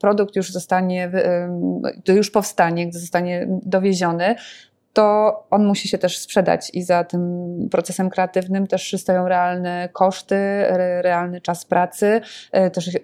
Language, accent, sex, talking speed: Polish, native, female, 130 wpm